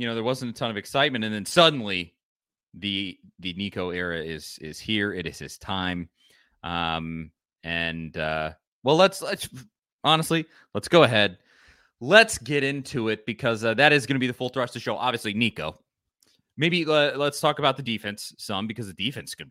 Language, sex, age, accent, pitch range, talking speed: English, male, 30-49, American, 95-140 Hz, 195 wpm